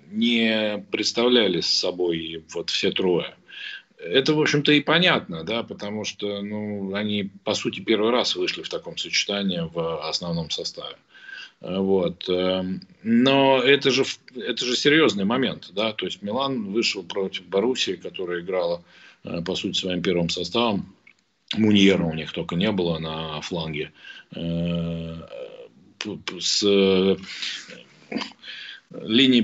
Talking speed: 125 wpm